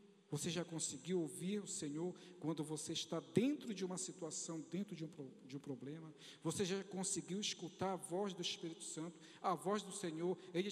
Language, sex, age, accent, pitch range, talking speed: Portuguese, male, 50-69, Brazilian, 145-185 Hz, 185 wpm